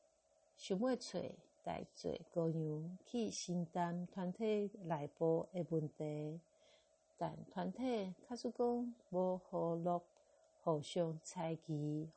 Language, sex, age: Chinese, female, 50-69